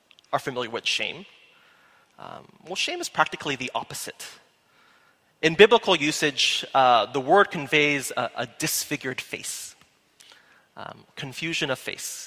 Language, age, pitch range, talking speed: English, 30-49, 140-195 Hz, 125 wpm